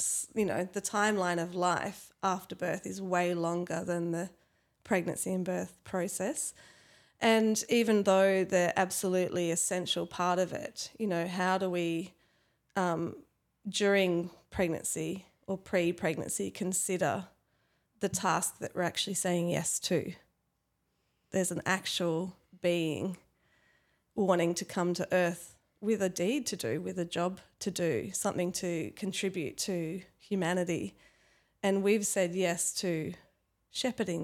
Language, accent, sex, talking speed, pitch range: English, Australian, female, 135 wpm, 175-195 Hz